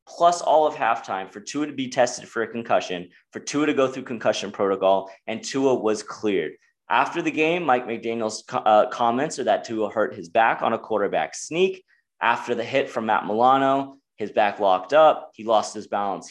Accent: American